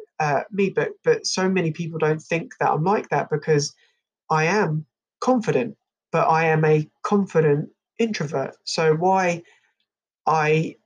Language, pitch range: English, 150-185 Hz